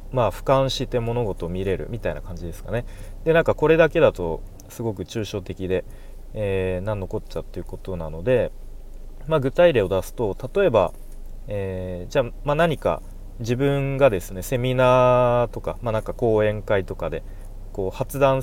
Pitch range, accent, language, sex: 95-125 Hz, native, Japanese, male